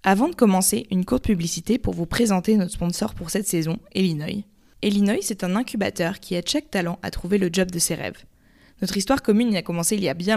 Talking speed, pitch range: 230 wpm, 175-215 Hz